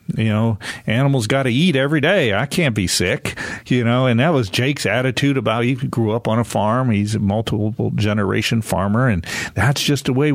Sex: male